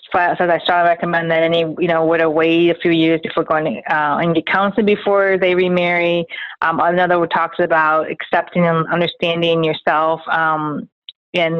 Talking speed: 165 wpm